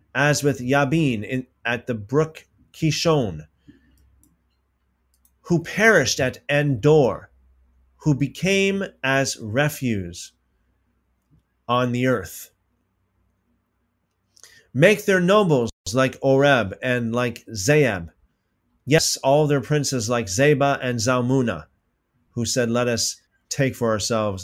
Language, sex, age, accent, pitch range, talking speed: English, male, 30-49, American, 110-145 Hz, 105 wpm